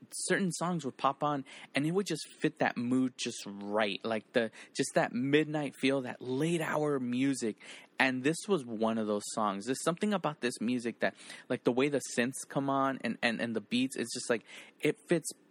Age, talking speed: 20-39, 210 wpm